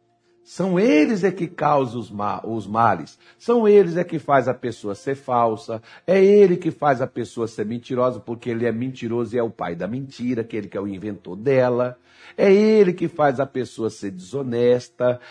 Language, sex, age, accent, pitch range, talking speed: Portuguese, male, 60-79, Brazilian, 120-175 Hz, 195 wpm